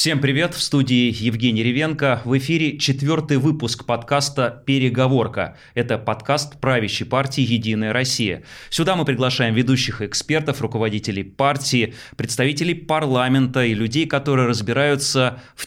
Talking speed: 125 wpm